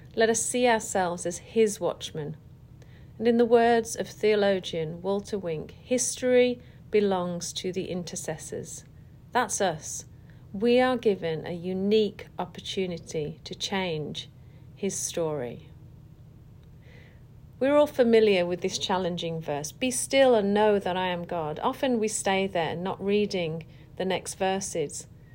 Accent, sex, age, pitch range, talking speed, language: British, female, 40-59, 140-195 Hz, 135 wpm, English